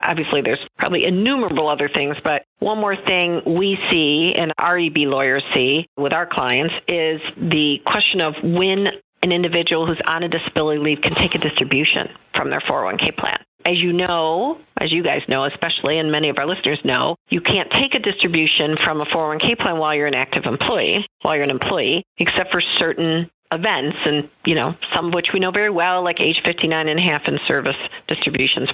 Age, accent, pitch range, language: 50-69, American, 150-185 Hz, English